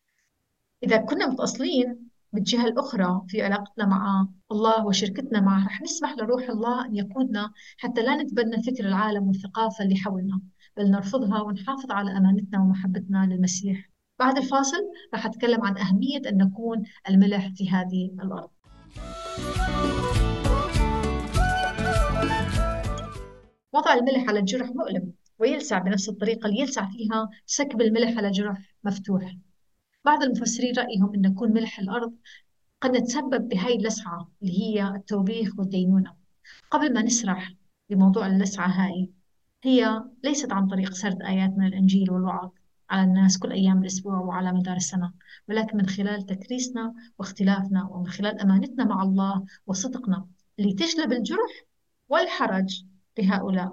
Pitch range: 190-235 Hz